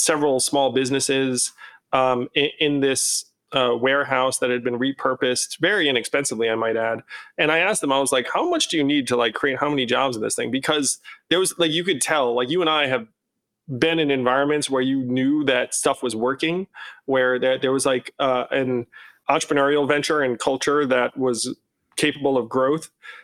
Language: English